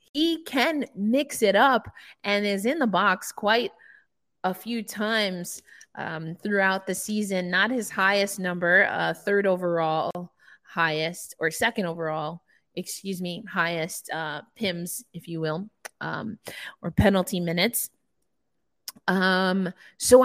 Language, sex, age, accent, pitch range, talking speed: English, female, 20-39, American, 180-225 Hz, 125 wpm